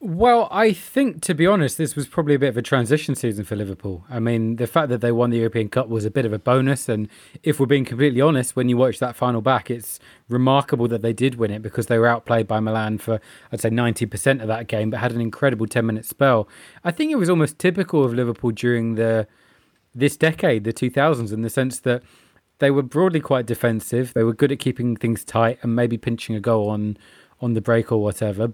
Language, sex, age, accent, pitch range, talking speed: English, male, 20-39, British, 115-135 Hz, 235 wpm